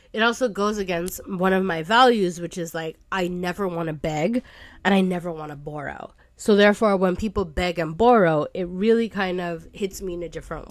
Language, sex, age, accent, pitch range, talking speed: English, female, 20-39, American, 170-200 Hz, 215 wpm